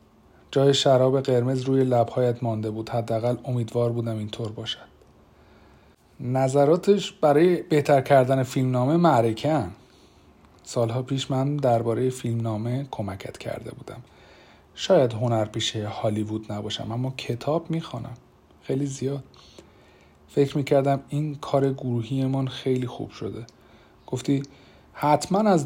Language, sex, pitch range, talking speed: Persian, male, 110-140 Hz, 110 wpm